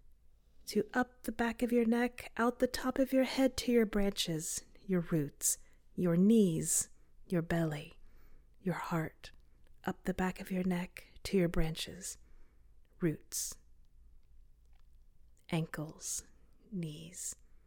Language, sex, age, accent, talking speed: English, female, 30-49, American, 120 wpm